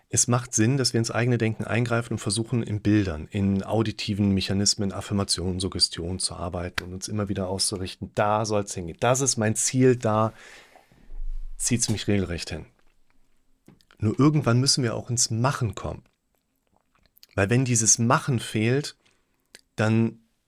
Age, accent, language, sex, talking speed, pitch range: 40-59, German, German, male, 160 wpm, 100-120 Hz